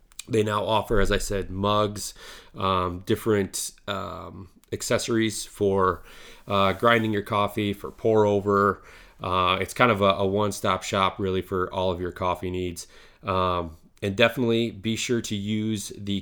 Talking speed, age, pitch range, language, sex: 155 wpm, 30-49, 95-110 Hz, English, male